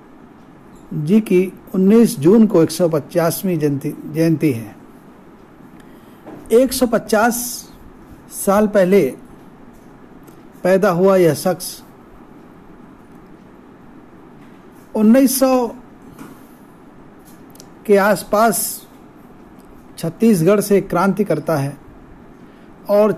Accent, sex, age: native, male, 50-69